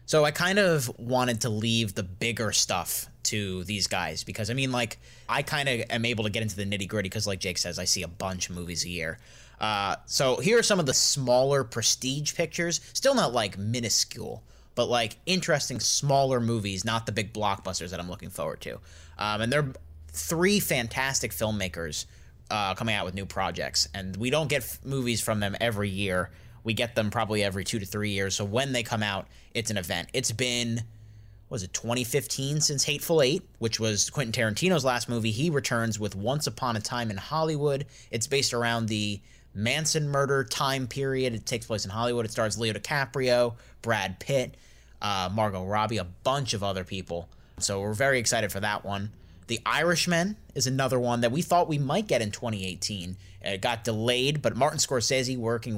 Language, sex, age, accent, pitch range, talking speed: English, male, 30-49, American, 100-130 Hz, 195 wpm